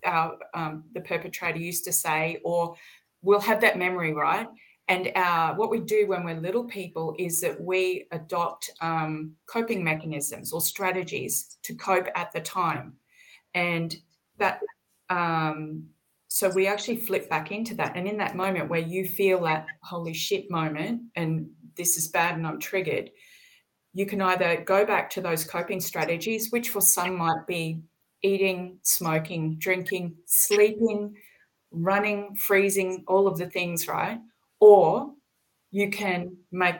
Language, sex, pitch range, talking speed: English, female, 170-205 Hz, 150 wpm